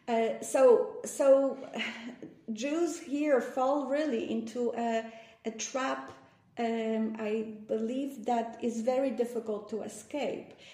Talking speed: 110 wpm